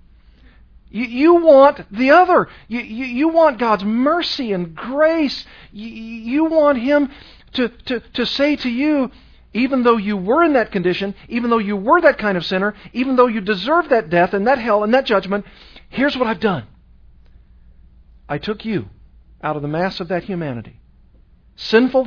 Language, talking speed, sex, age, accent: English, 175 wpm, male, 50-69, American